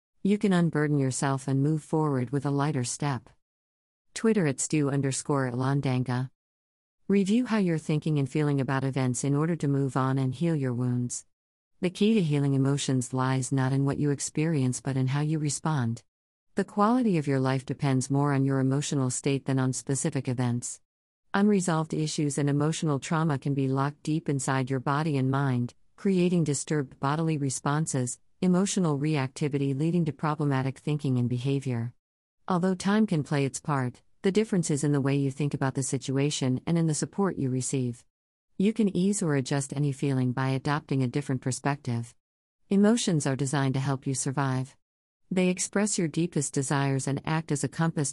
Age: 50-69